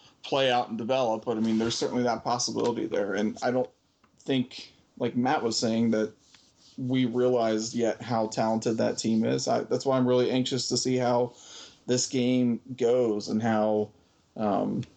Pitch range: 110-125 Hz